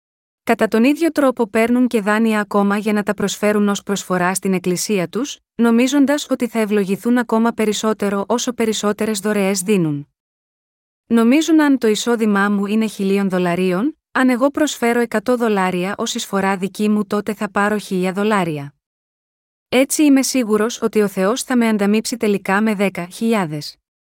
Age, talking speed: 30-49, 155 wpm